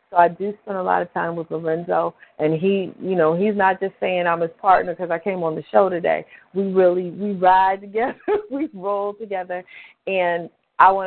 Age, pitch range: 40-59, 160-185 Hz